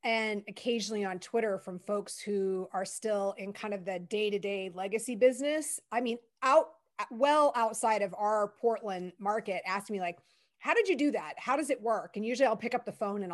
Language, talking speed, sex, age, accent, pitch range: English, 205 wpm, female, 30-49, American, 200-245 Hz